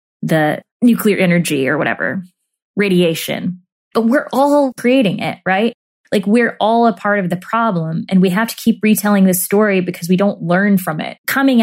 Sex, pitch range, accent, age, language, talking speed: female, 175-225 Hz, American, 20-39, English, 180 wpm